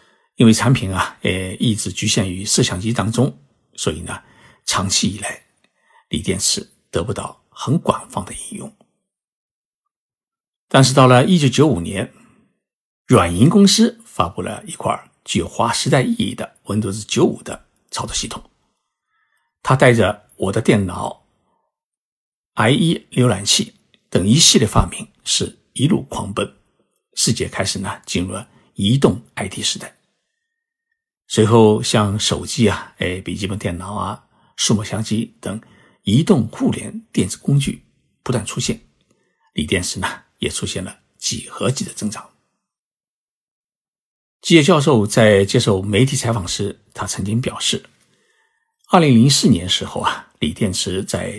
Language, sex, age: Chinese, male, 60-79